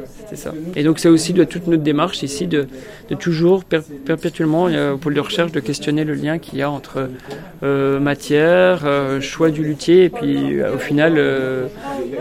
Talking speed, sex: 190 wpm, male